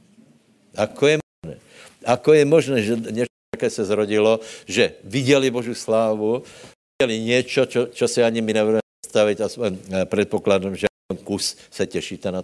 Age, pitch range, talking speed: 60-79, 95-115 Hz, 165 wpm